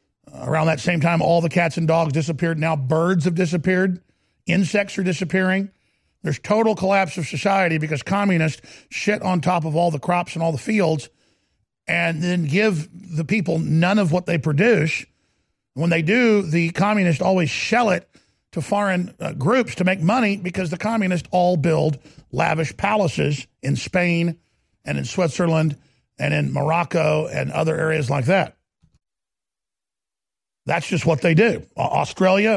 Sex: male